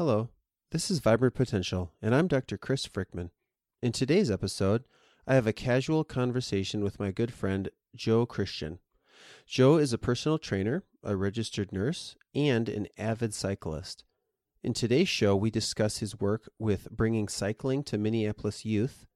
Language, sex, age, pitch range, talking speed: English, male, 30-49, 100-125 Hz, 155 wpm